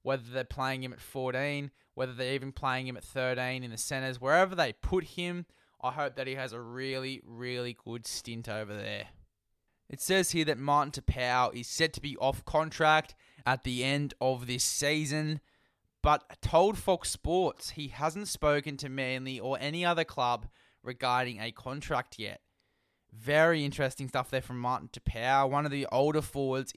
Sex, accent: male, Australian